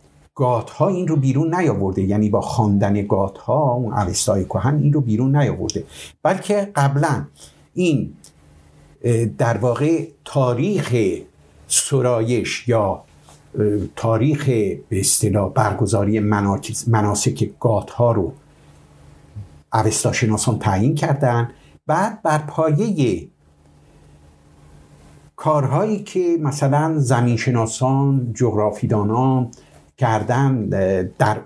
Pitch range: 105-145 Hz